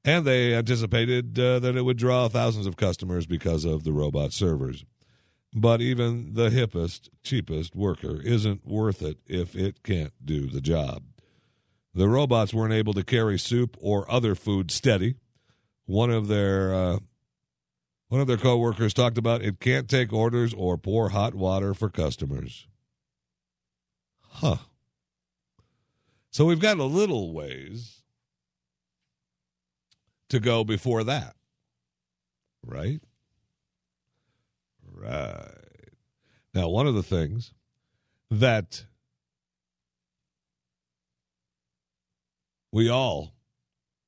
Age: 50-69